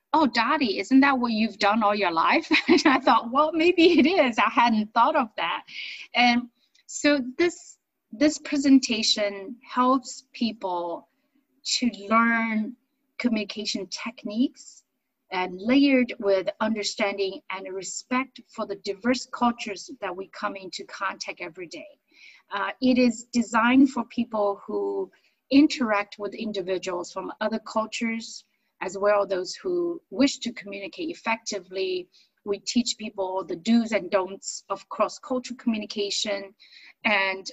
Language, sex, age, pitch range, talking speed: English, female, 30-49, 200-270 Hz, 130 wpm